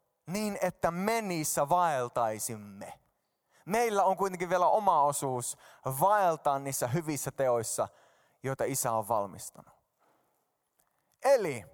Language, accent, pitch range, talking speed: Finnish, native, 145-235 Hz, 100 wpm